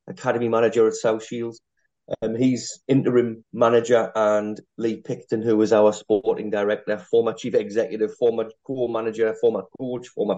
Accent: British